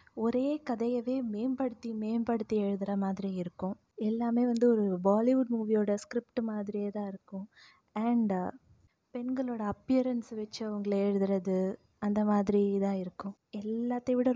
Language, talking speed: Tamil, 115 wpm